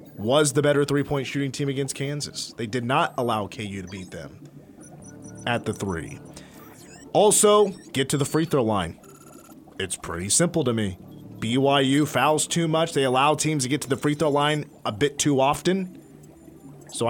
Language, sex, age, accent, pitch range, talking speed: English, male, 30-49, American, 130-155 Hz, 175 wpm